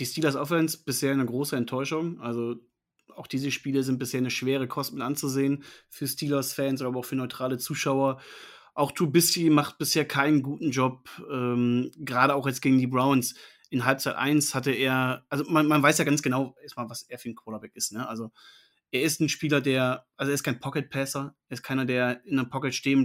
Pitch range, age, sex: 125-145 Hz, 30-49, male